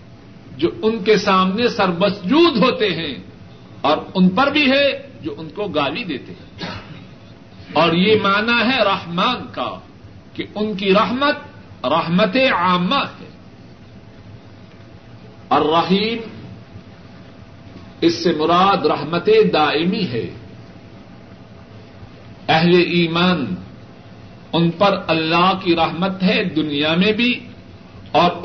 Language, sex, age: Urdu, male, 60-79